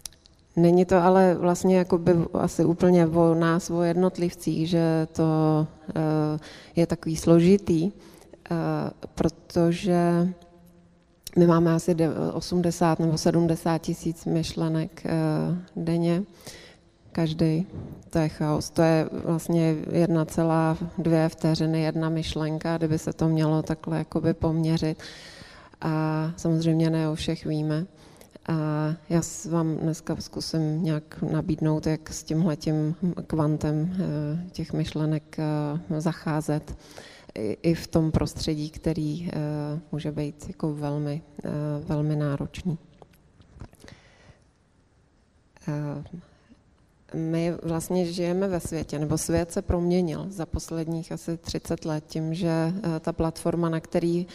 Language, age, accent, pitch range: Czech, 20-39, native, 155-170 Hz